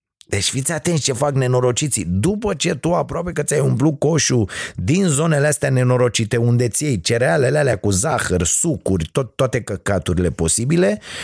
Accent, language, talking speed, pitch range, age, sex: native, Romanian, 160 wpm, 110-145 Hz, 30-49, male